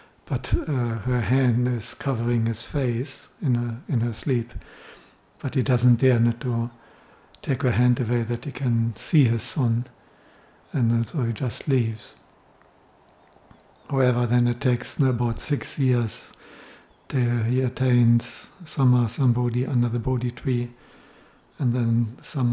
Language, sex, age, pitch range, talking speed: English, male, 60-79, 120-135 Hz, 150 wpm